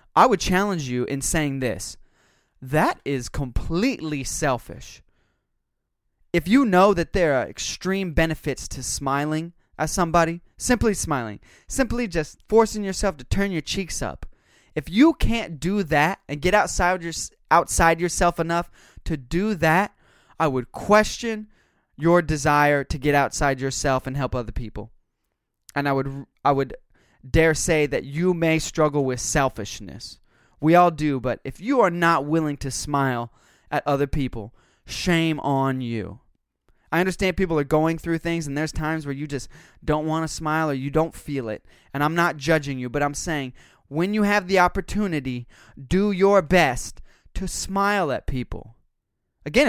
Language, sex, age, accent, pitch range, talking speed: English, male, 20-39, American, 135-175 Hz, 165 wpm